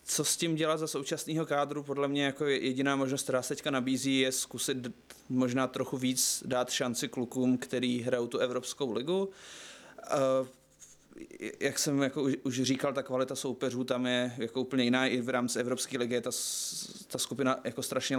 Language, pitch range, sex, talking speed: Czech, 120-135 Hz, male, 175 wpm